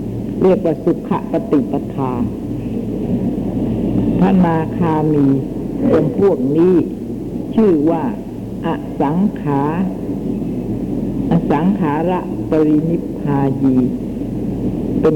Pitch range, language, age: 155-195 Hz, Thai, 60-79